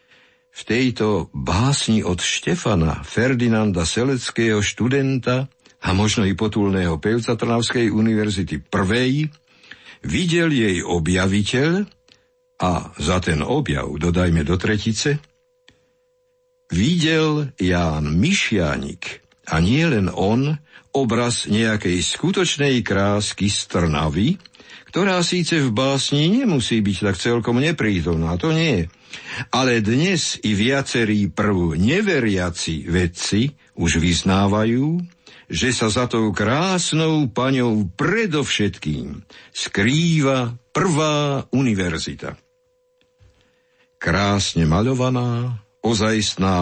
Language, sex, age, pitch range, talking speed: Slovak, male, 60-79, 95-145 Hz, 95 wpm